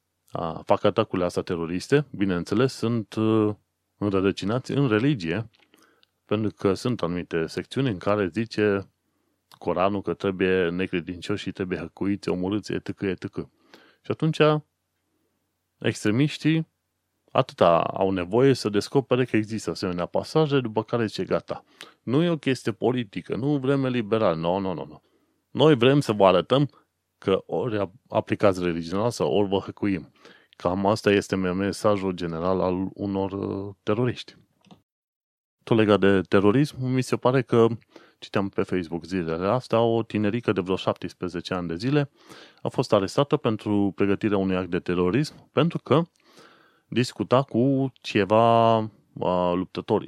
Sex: male